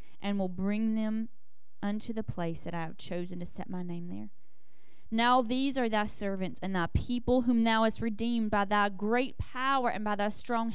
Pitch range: 175-225 Hz